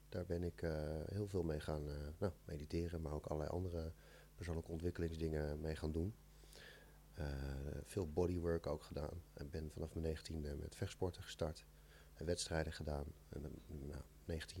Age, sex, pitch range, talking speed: 40-59, male, 80-100 Hz, 160 wpm